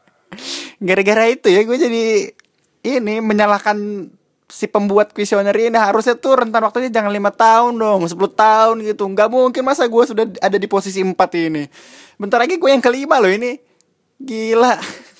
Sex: male